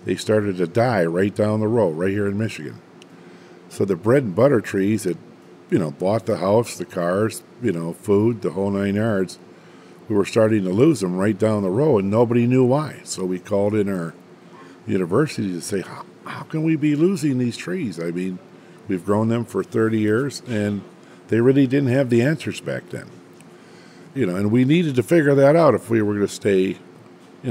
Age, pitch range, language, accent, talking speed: 50-69, 90-115 Hz, English, American, 210 wpm